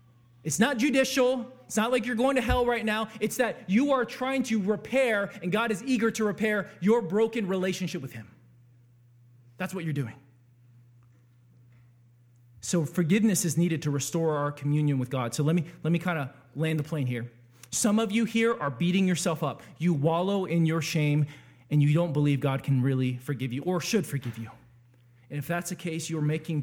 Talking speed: 200 wpm